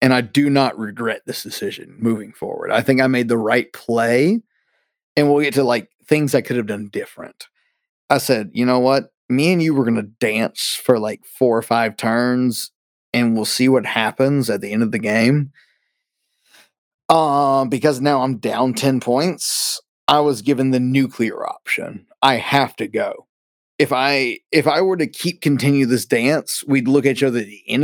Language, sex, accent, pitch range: English, male, American, 120-145 Hz